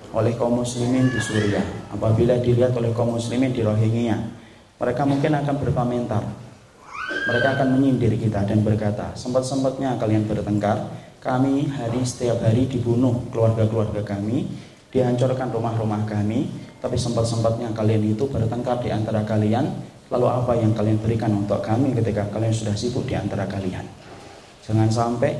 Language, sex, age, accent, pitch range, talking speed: Indonesian, male, 20-39, native, 110-130 Hz, 140 wpm